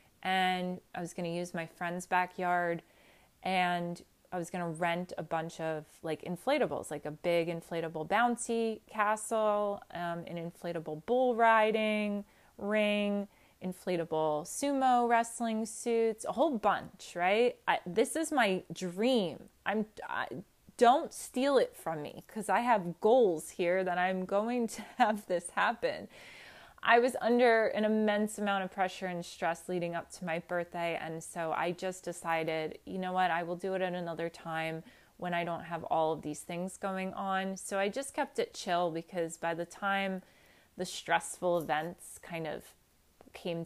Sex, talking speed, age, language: female, 165 wpm, 20-39, English